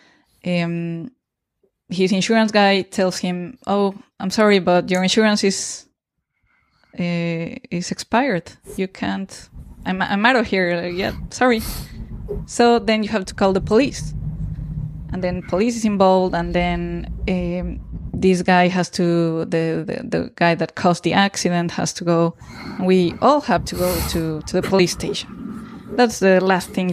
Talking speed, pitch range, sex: 155 wpm, 165-200 Hz, female